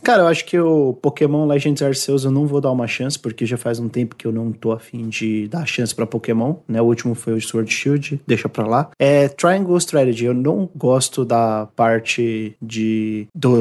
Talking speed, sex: 215 wpm, male